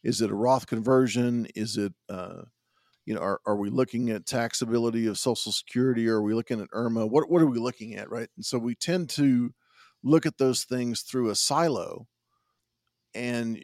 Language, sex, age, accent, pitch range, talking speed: English, male, 40-59, American, 115-140 Hz, 195 wpm